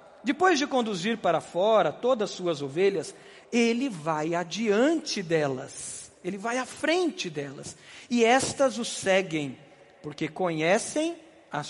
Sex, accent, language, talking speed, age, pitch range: male, Brazilian, Portuguese, 130 wpm, 50-69, 185-260 Hz